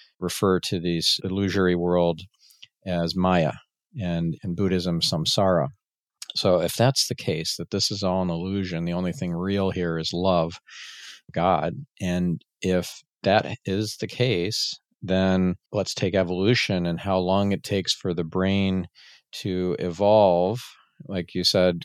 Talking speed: 145 wpm